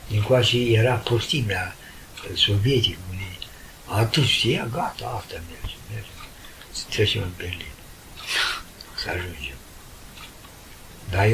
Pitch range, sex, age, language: 95-125 Hz, male, 60-79, Romanian